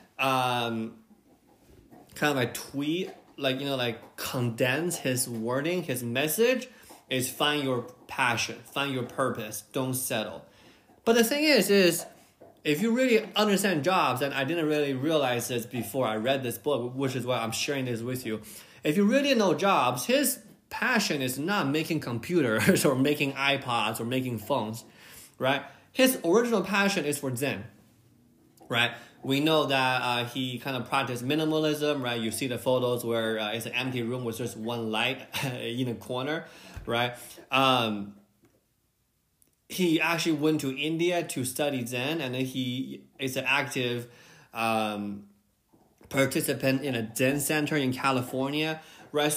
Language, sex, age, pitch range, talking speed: English, male, 20-39, 120-155 Hz, 155 wpm